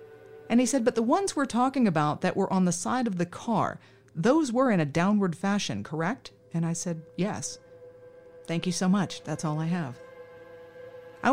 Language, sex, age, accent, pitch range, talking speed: English, female, 40-59, American, 155-210 Hz, 195 wpm